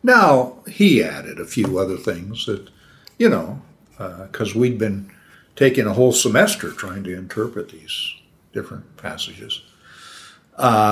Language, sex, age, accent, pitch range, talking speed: English, male, 60-79, American, 110-155 Hz, 135 wpm